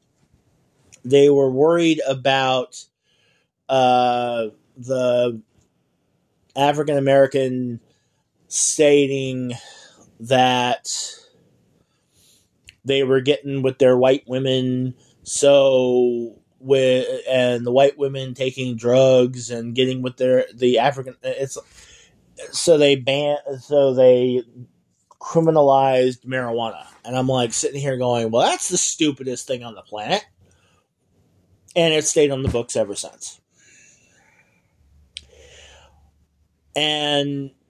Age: 20-39